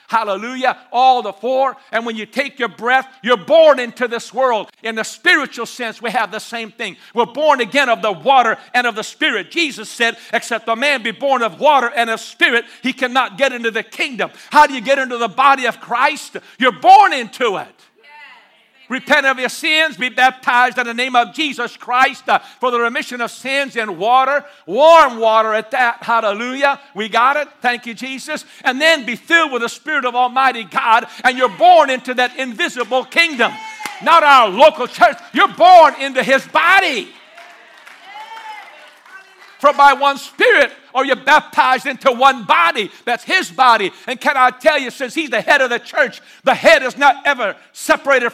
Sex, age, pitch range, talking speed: male, 60-79, 220-280 Hz, 190 wpm